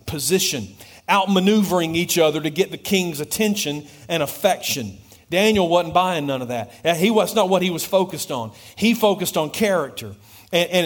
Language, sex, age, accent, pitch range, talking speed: English, male, 40-59, American, 125-180 Hz, 165 wpm